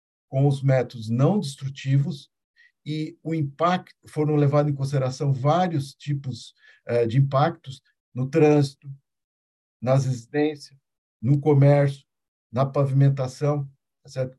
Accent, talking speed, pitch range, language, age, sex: Brazilian, 105 wpm, 135-165 Hz, Portuguese, 50-69, male